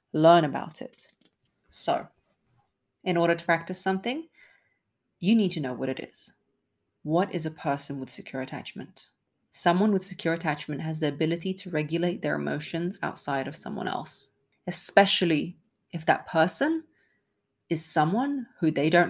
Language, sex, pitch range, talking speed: English, female, 140-175 Hz, 150 wpm